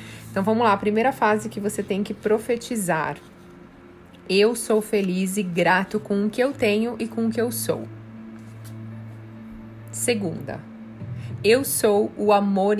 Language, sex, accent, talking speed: Portuguese, female, Brazilian, 150 wpm